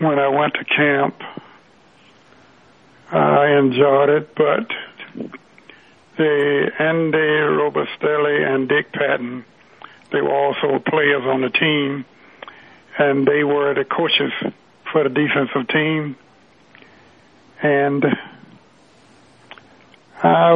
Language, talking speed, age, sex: English, 95 wpm, 60-79, male